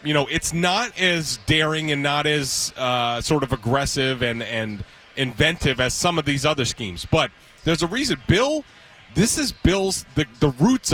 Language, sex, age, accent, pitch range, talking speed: English, male, 30-49, American, 130-170 Hz, 180 wpm